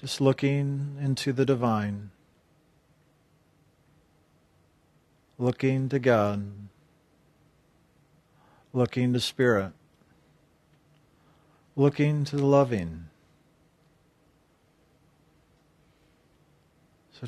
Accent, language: American, English